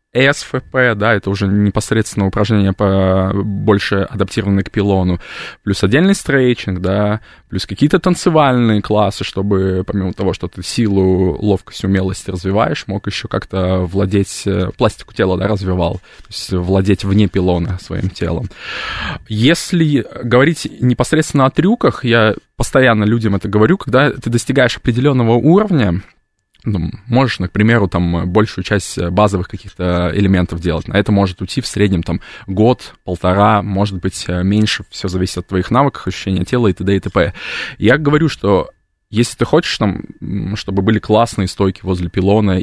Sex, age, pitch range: male, 20-39, 95-115 Hz